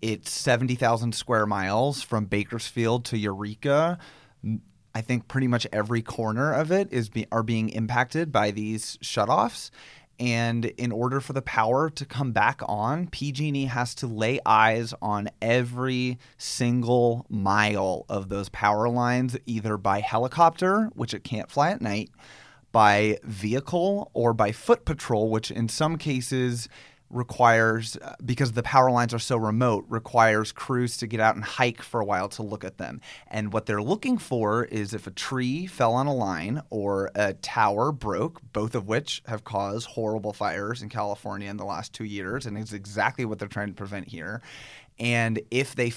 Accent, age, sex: American, 30-49, male